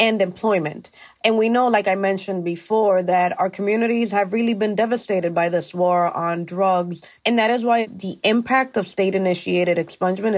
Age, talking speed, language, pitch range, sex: 20-39, 180 wpm, English, 175-215 Hz, female